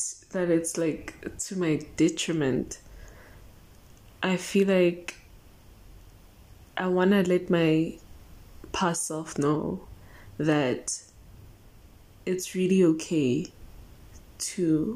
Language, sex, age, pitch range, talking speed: English, female, 20-39, 100-165 Hz, 90 wpm